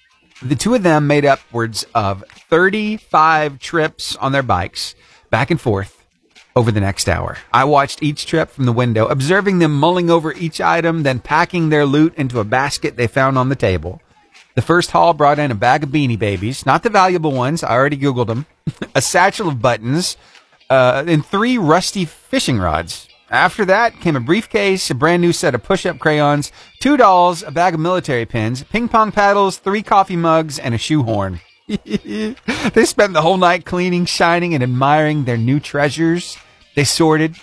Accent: American